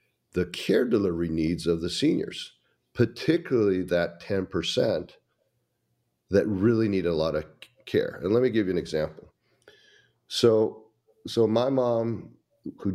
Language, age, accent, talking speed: English, 50-69, American, 135 wpm